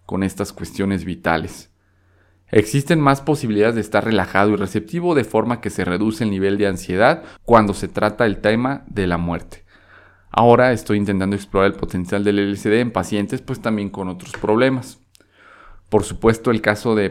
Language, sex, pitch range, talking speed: Spanish, male, 100-120 Hz, 170 wpm